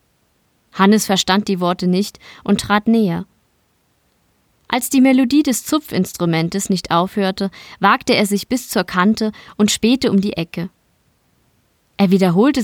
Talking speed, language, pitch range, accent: 135 wpm, German, 185-225 Hz, German